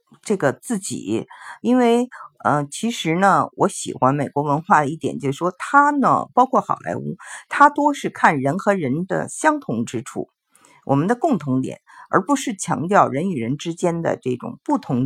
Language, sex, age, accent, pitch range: Chinese, female, 50-69, native, 135-205 Hz